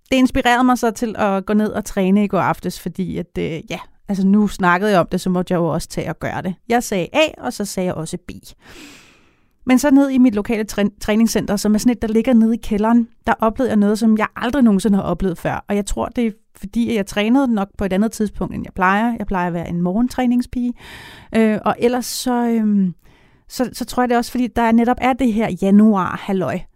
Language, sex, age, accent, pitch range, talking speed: Danish, female, 30-49, native, 195-235 Hz, 250 wpm